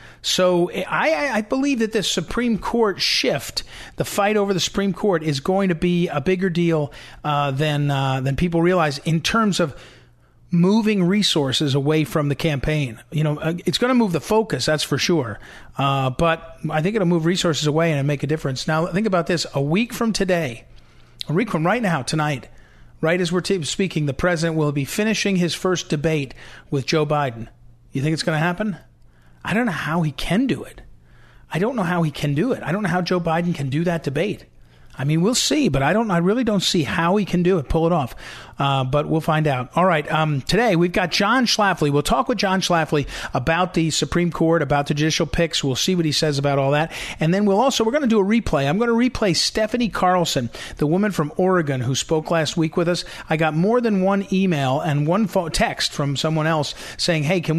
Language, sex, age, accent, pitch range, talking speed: English, male, 40-59, American, 150-185 Hz, 225 wpm